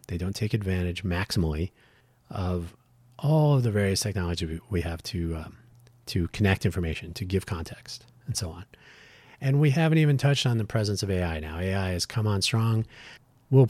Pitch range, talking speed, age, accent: 90-120 Hz, 180 wpm, 30-49, American